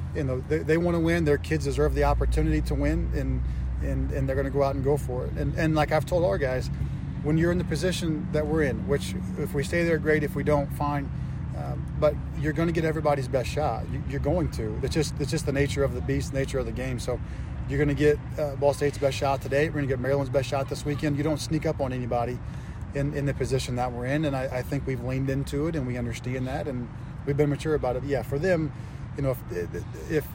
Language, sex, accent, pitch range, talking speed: English, male, American, 125-145 Hz, 265 wpm